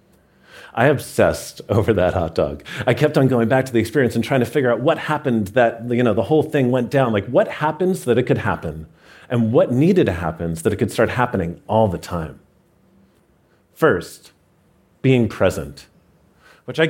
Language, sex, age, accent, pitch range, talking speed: English, male, 40-59, American, 95-135 Hz, 195 wpm